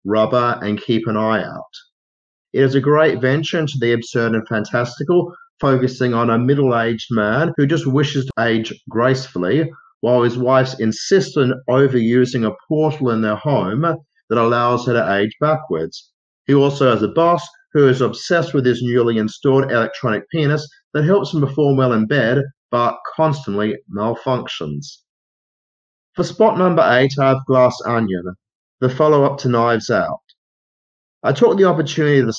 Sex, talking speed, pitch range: male, 165 wpm, 115-150 Hz